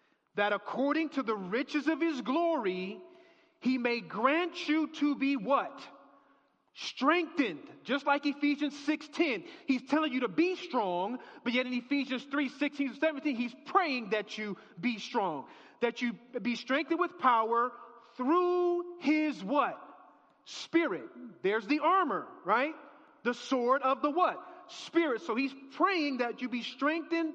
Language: English